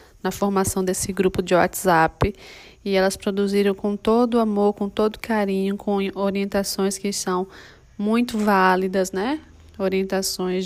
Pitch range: 190-215 Hz